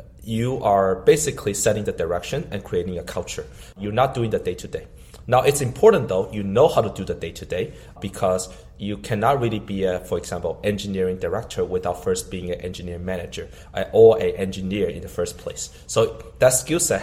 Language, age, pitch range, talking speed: English, 30-49, 95-120 Hz, 195 wpm